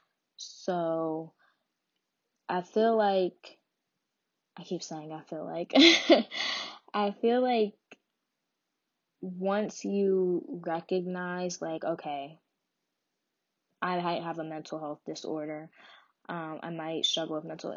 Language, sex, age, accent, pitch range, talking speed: English, female, 10-29, American, 155-185 Hz, 105 wpm